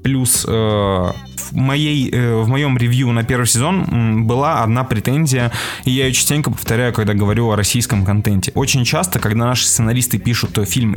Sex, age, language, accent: male, 20-39, Russian, native